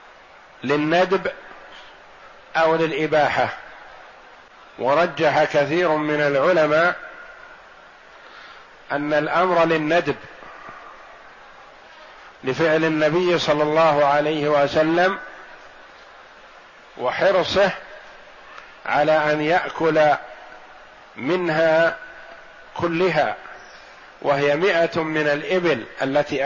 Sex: male